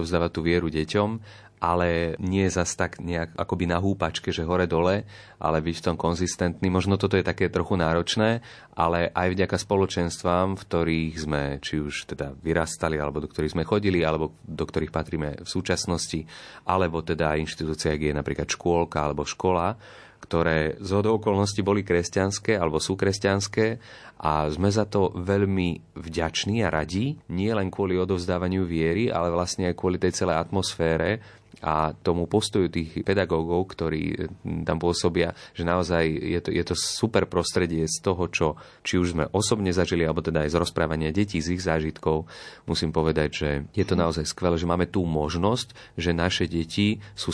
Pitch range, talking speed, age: 80-95 Hz, 170 wpm, 30-49